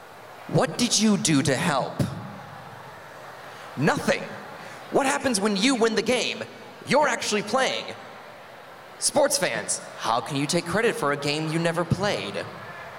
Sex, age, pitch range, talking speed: male, 30-49, 150-225 Hz, 140 wpm